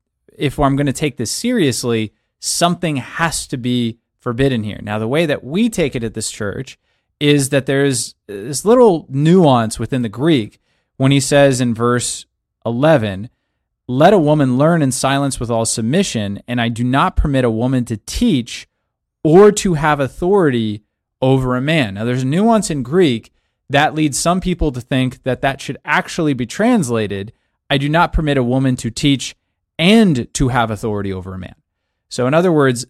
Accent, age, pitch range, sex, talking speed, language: American, 30-49, 115-155 Hz, male, 185 wpm, English